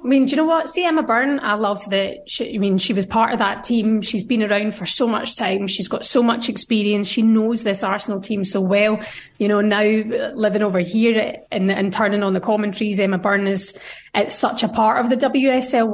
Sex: female